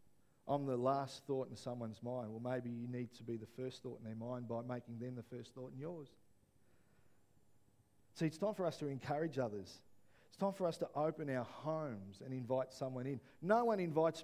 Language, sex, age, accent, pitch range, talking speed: English, male, 50-69, Australian, 120-185 Hz, 210 wpm